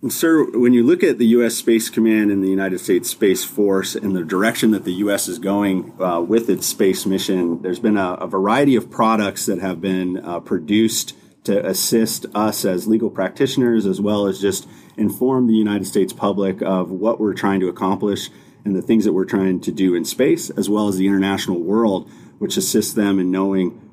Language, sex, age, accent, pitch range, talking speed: English, male, 30-49, American, 95-110 Hz, 205 wpm